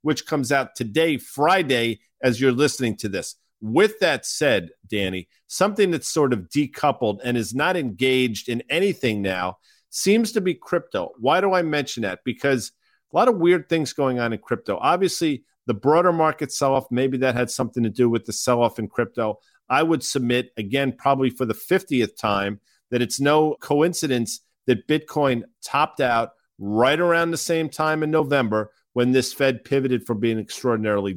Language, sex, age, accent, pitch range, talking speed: English, male, 50-69, American, 120-155 Hz, 175 wpm